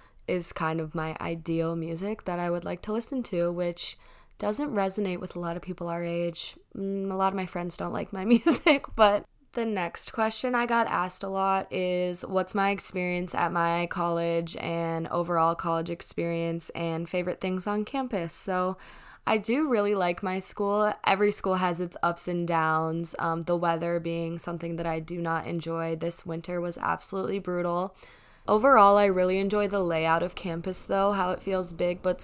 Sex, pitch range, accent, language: female, 170-195 Hz, American, English